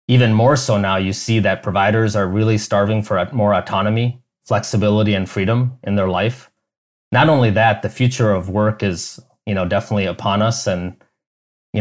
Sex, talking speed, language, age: male, 180 wpm, English, 20-39